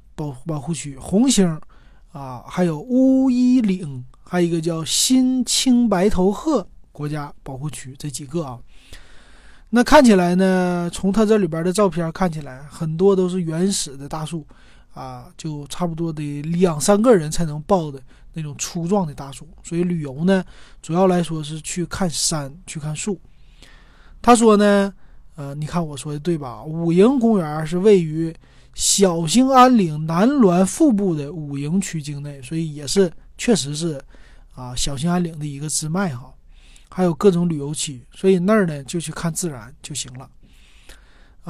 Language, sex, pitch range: Chinese, male, 145-190 Hz